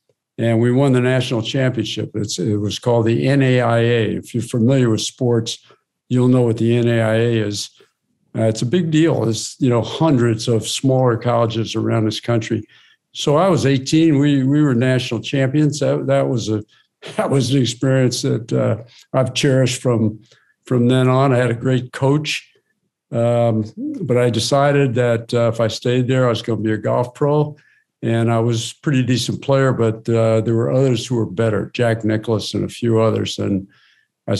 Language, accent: English, American